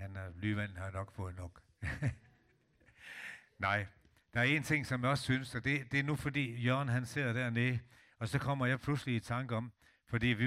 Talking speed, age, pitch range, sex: 200 wpm, 60-79, 110-135 Hz, male